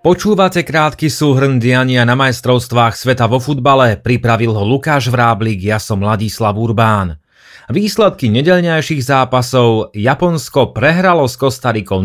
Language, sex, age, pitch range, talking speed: Slovak, male, 30-49, 110-140 Hz, 120 wpm